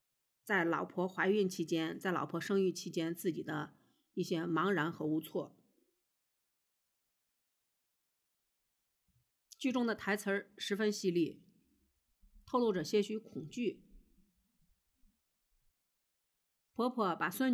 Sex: female